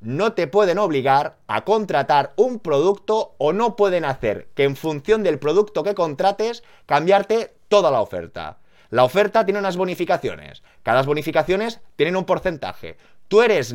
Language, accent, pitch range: Spanish, Spanish, 135-205 Hz